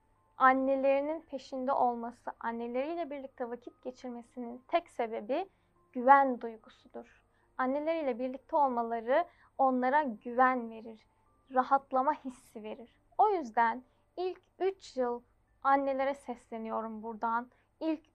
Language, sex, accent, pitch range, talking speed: Turkish, female, native, 245-290 Hz, 95 wpm